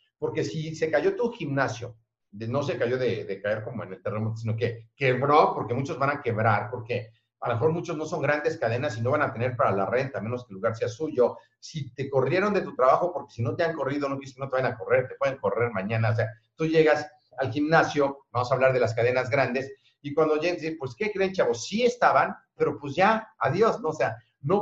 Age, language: 50-69, Spanish